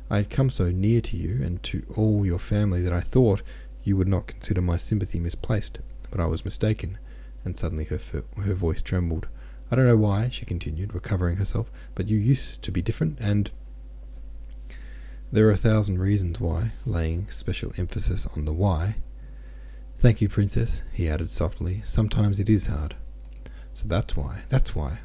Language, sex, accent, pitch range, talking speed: English, male, Australian, 80-105 Hz, 180 wpm